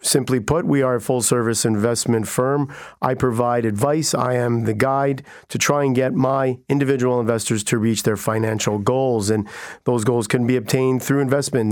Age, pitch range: 50-69, 120-135 Hz